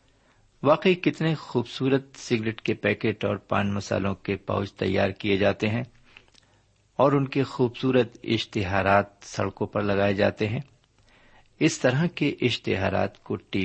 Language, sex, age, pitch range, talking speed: Urdu, male, 50-69, 100-130 Hz, 135 wpm